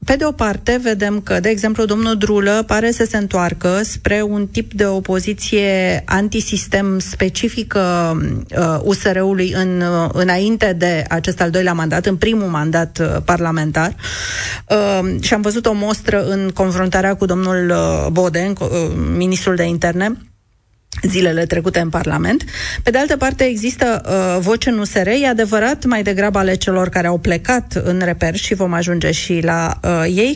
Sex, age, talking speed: female, 30-49, 160 wpm